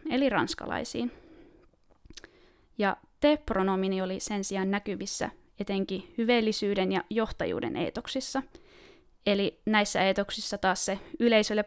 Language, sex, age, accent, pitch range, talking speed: Finnish, female, 20-39, native, 195-240 Hz, 95 wpm